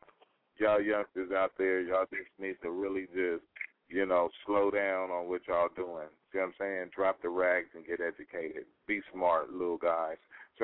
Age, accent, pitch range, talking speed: 40-59, American, 90-100 Hz, 185 wpm